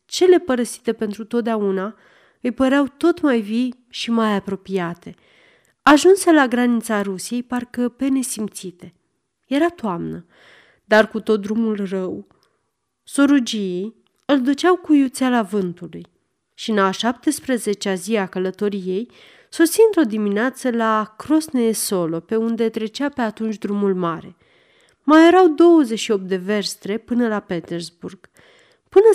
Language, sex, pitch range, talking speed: Romanian, female, 200-285 Hz, 130 wpm